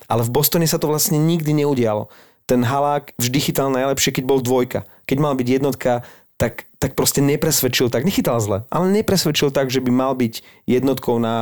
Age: 30-49